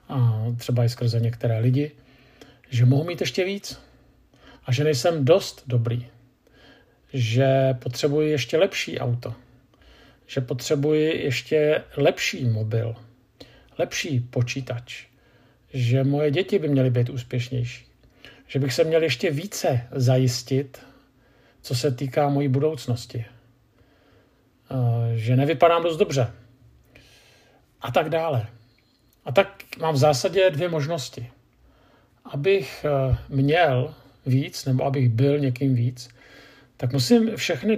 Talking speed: 115 wpm